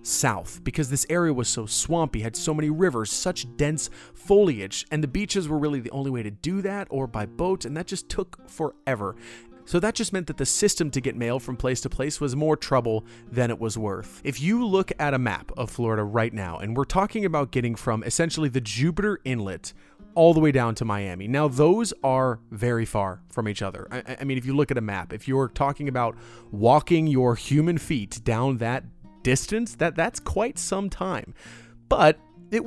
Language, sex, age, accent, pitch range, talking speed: English, male, 30-49, American, 115-165 Hz, 210 wpm